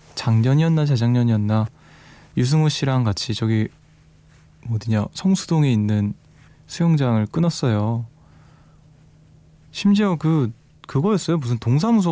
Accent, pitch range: native, 110-150 Hz